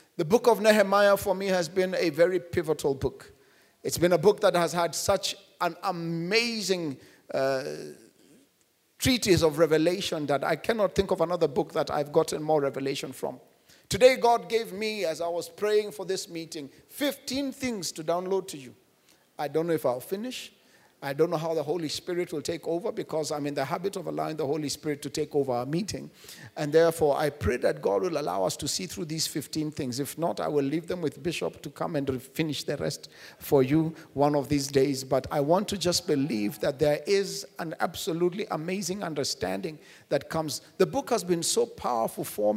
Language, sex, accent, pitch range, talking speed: English, male, South African, 150-195 Hz, 205 wpm